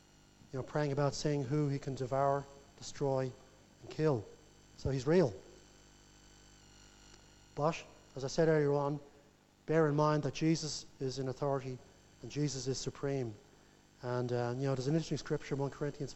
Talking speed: 165 wpm